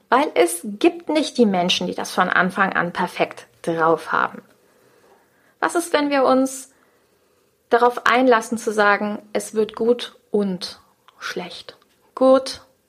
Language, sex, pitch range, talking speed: German, female, 195-245 Hz, 135 wpm